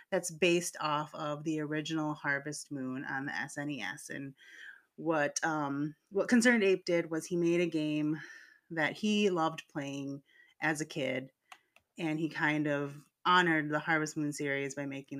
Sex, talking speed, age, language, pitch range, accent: female, 160 wpm, 30-49, English, 150-185 Hz, American